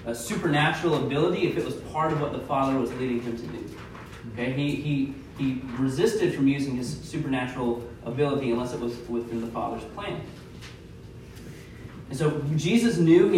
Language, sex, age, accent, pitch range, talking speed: English, male, 30-49, American, 120-155 Hz, 170 wpm